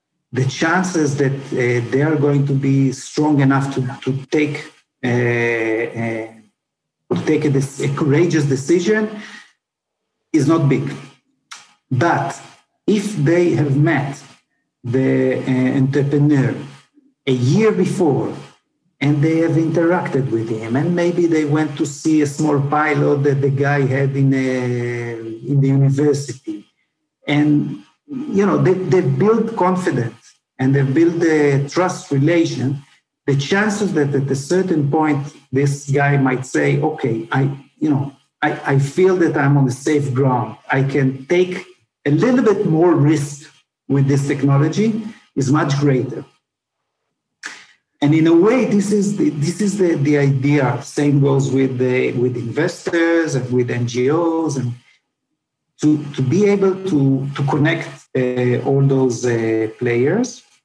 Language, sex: English, male